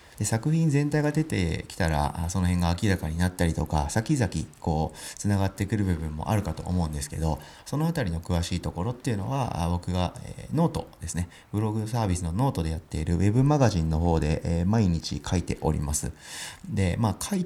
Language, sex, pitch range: Japanese, male, 85-120 Hz